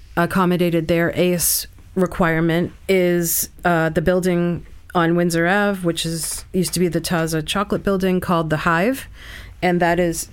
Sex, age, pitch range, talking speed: female, 40-59, 165-185 Hz, 150 wpm